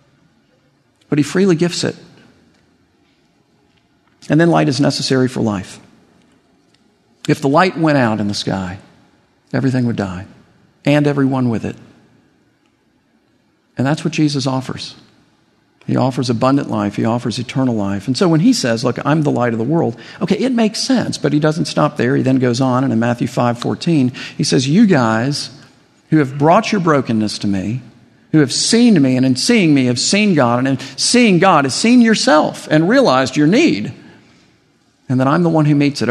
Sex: male